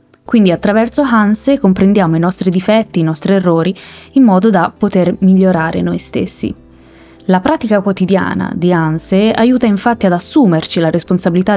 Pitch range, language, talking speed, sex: 175-225 Hz, Italian, 145 wpm, female